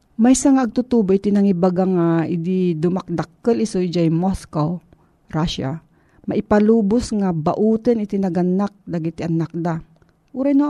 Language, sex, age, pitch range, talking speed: Filipino, female, 40-59, 170-210 Hz, 110 wpm